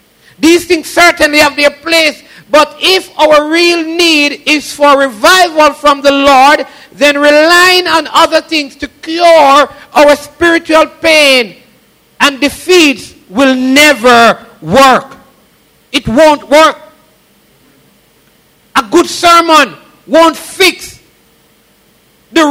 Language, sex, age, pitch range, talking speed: English, male, 50-69, 270-320 Hz, 110 wpm